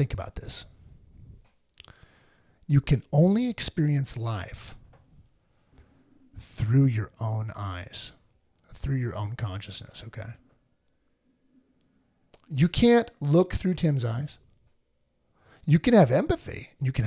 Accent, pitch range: American, 115-155 Hz